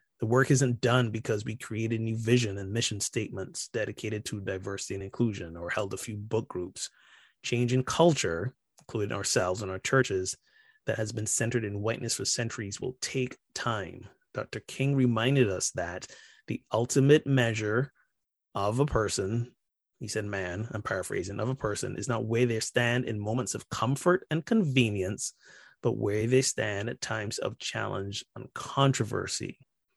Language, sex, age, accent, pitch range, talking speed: English, male, 30-49, American, 105-130 Hz, 165 wpm